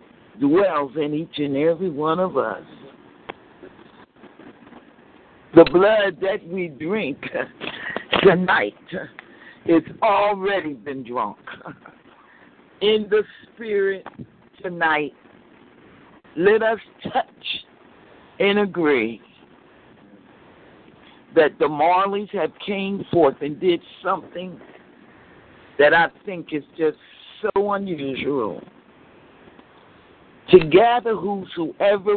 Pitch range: 165-215 Hz